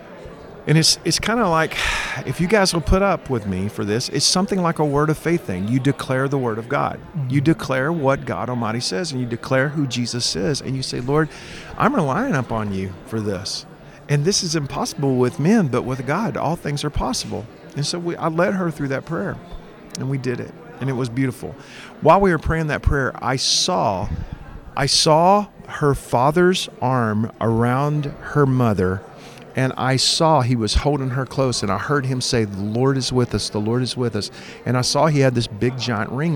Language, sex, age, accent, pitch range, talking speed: English, male, 40-59, American, 115-155 Hz, 215 wpm